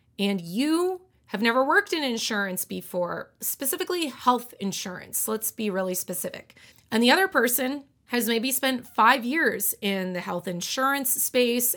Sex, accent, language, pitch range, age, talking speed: female, American, English, 200-255 Hz, 30-49, 150 wpm